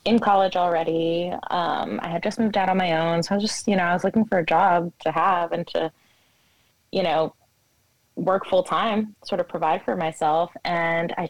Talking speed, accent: 210 wpm, American